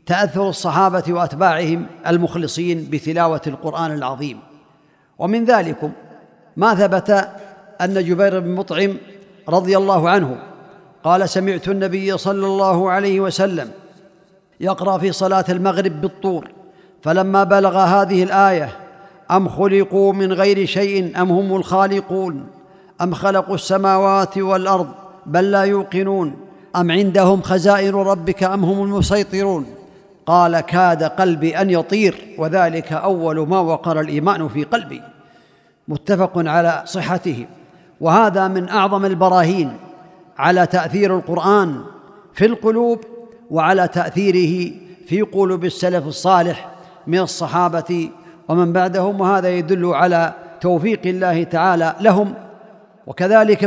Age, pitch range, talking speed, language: 50-69, 175-195 Hz, 110 wpm, Arabic